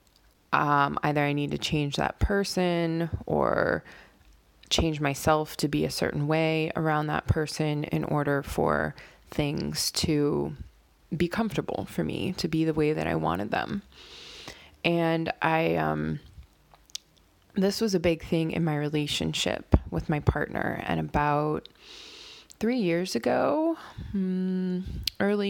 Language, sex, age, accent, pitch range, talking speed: English, female, 20-39, American, 145-170 Hz, 130 wpm